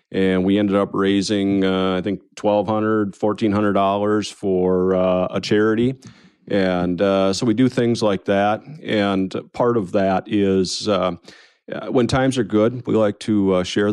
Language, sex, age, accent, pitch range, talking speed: English, male, 40-59, American, 95-110 Hz, 160 wpm